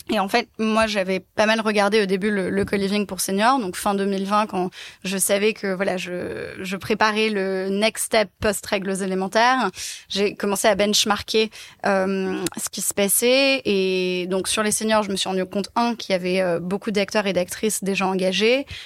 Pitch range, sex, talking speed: 190-215 Hz, female, 195 wpm